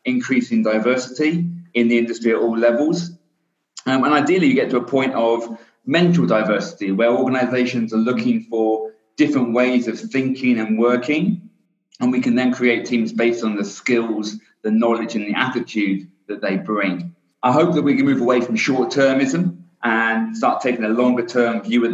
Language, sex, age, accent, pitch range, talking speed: English, male, 30-49, British, 110-130 Hz, 175 wpm